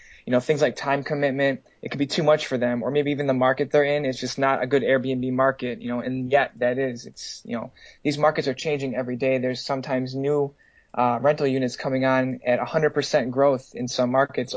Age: 20-39